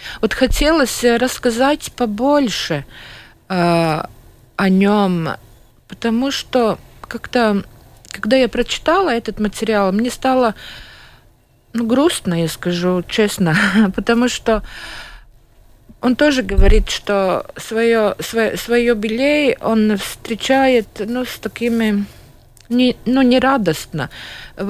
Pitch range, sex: 185-245 Hz, female